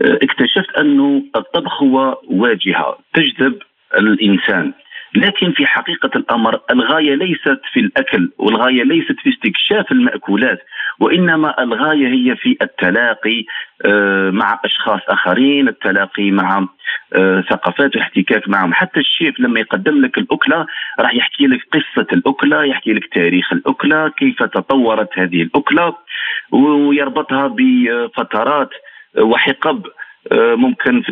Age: 50-69